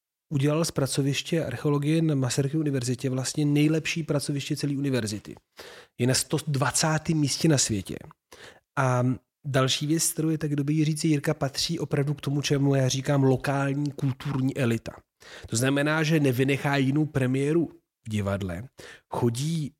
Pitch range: 120-145 Hz